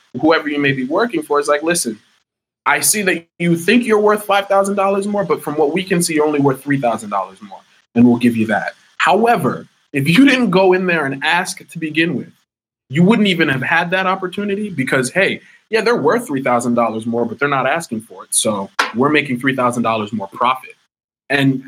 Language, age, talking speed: English, 20-39, 200 wpm